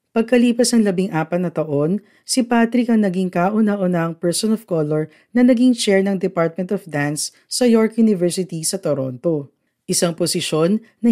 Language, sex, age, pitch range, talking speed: Filipino, female, 50-69, 150-215 Hz, 160 wpm